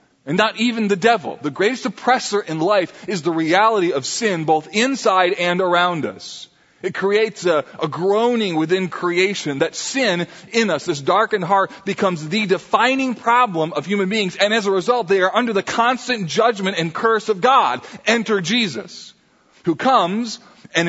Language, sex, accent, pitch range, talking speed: English, male, American, 165-215 Hz, 170 wpm